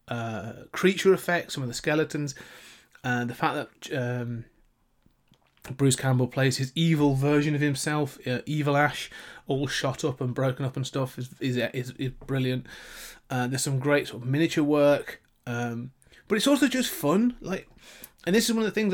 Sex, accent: male, British